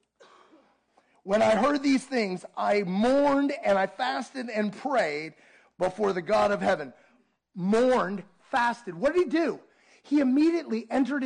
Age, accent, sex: 30-49, American, male